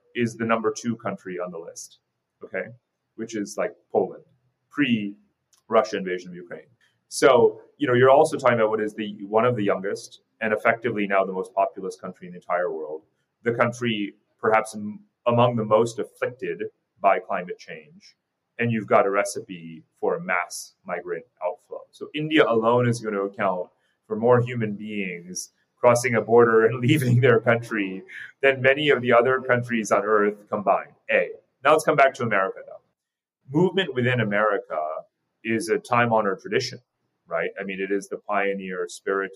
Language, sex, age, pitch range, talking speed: English, male, 30-49, 100-150 Hz, 175 wpm